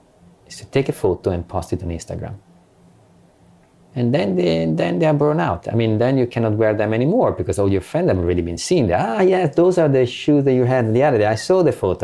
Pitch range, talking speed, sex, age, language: 90-120 Hz, 250 wpm, male, 30-49, English